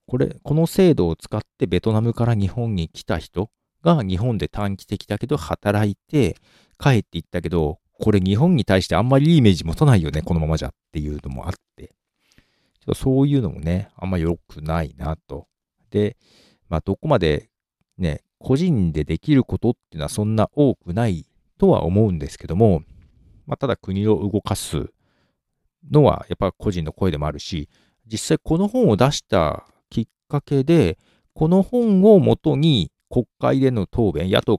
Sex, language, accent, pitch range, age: male, Japanese, native, 90-140 Hz, 50-69